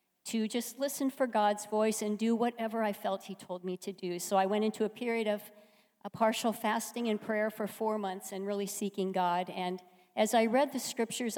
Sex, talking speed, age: female, 215 wpm, 50-69